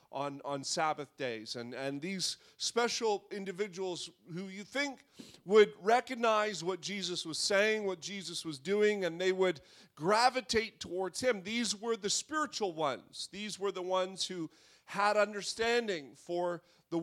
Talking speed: 150 wpm